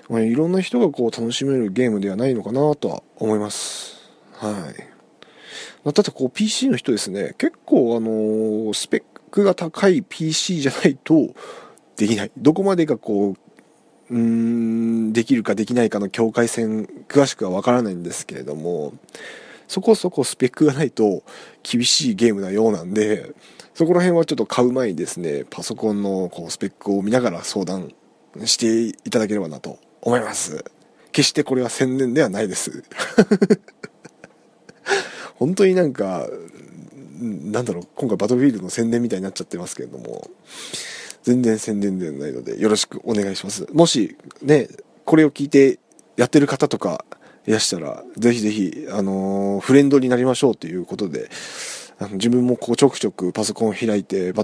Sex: male